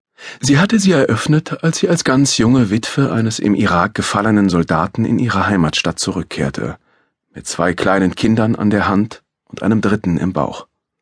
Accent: German